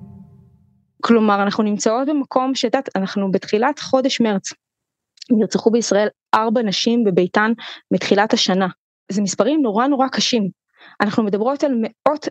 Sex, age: female, 20-39